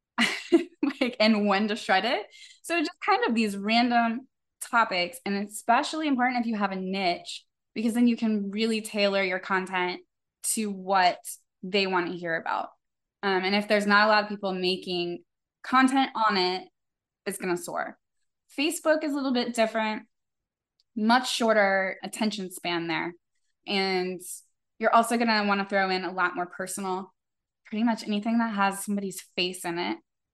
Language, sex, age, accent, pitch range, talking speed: English, female, 10-29, American, 190-245 Hz, 170 wpm